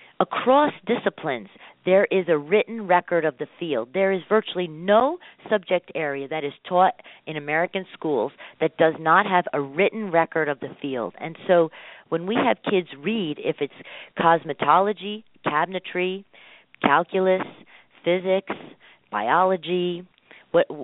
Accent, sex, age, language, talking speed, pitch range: American, female, 50-69, English, 135 wpm, 155-195 Hz